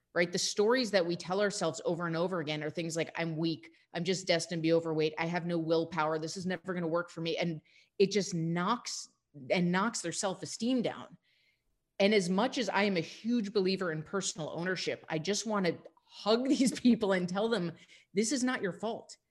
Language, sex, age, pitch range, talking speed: English, female, 30-49, 170-215 Hz, 220 wpm